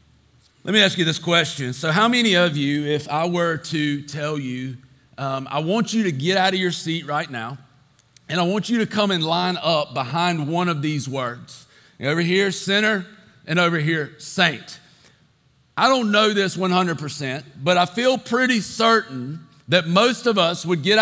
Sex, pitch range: male, 155-210 Hz